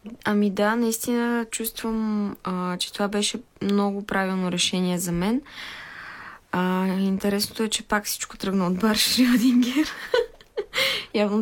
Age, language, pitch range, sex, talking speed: 20-39, Bulgarian, 175-215 Hz, female, 120 wpm